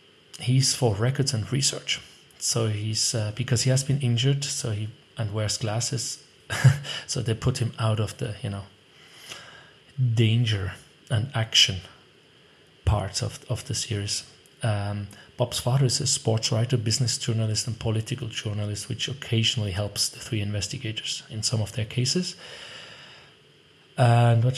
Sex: male